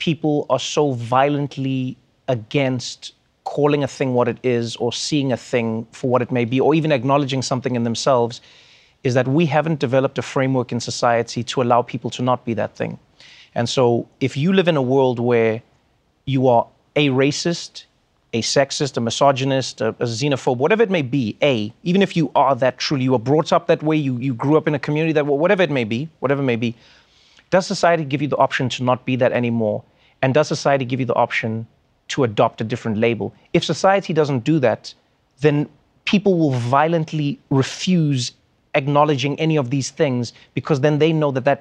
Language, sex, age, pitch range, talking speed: English, male, 30-49, 125-150 Hz, 200 wpm